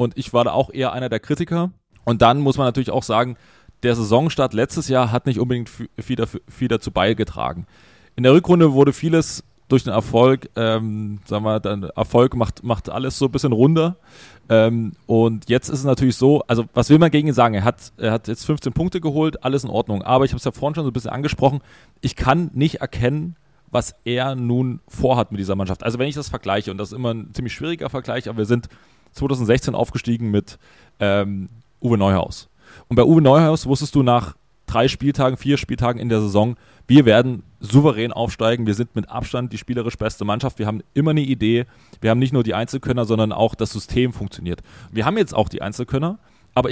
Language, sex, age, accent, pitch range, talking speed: German, male, 30-49, German, 110-135 Hz, 210 wpm